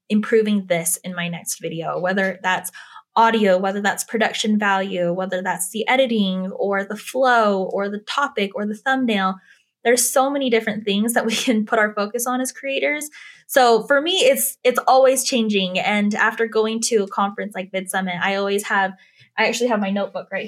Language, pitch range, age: English, 190-230 Hz, 10-29